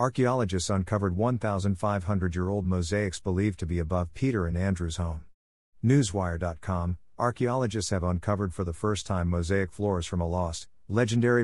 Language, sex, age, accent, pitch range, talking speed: English, male, 50-69, American, 85-110 Hz, 135 wpm